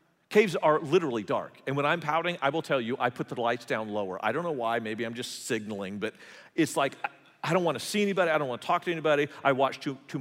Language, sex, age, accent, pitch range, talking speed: English, male, 40-59, American, 120-180 Hz, 265 wpm